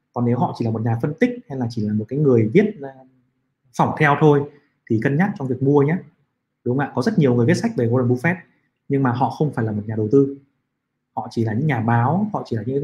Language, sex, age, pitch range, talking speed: Vietnamese, male, 20-39, 120-145 Hz, 275 wpm